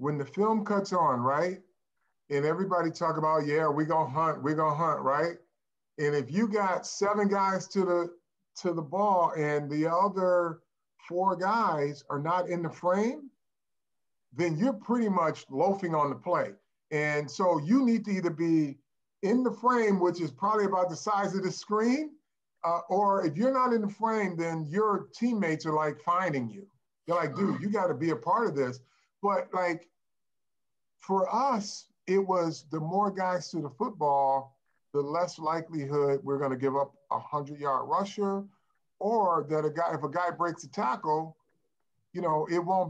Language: English